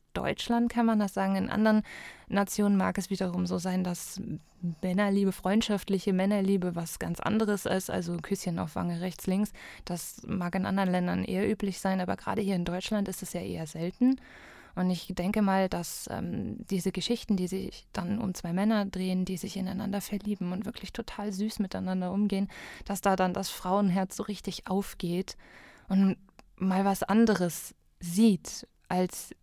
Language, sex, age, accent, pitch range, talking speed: German, female, 20-39, German, 180-205 Hz, 170 wpm